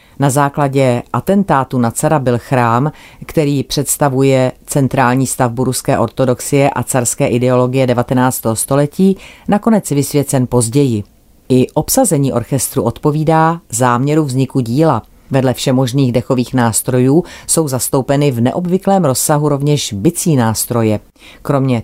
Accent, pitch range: native, 120-150 Hz